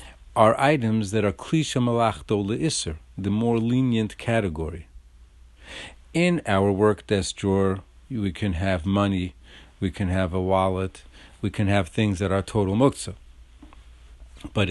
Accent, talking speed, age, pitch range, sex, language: American, 140 wpm, 50-69, 75-115 Hz, male, English